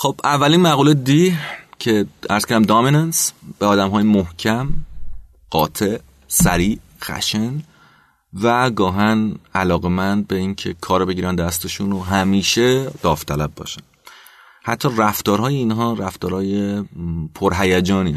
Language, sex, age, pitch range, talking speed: Persian, male, 30-49, 80-105 Hz, 110 wpm